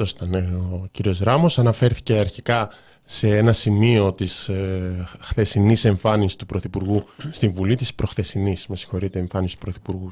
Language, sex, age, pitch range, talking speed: Greek, male, 20-39, 100-125 Hz, 125 wpm